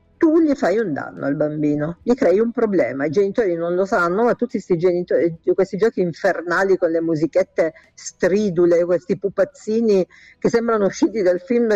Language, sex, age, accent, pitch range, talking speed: Italian, female, 50-69, native, 175-230 Hz, 175 wpm